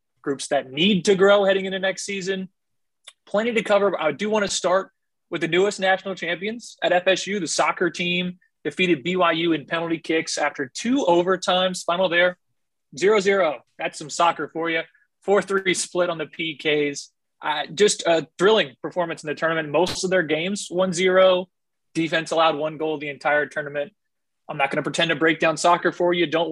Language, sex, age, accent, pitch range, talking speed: English, male, 20-39, American, 155-195 Hz, 185 wpm